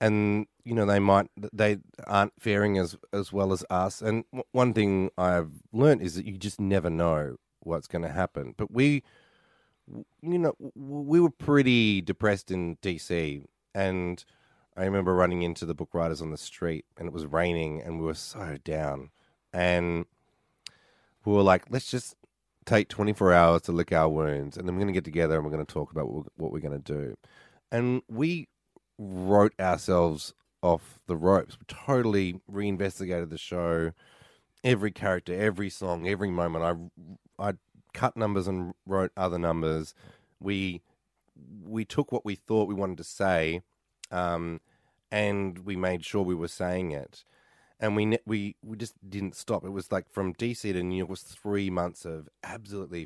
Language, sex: English, male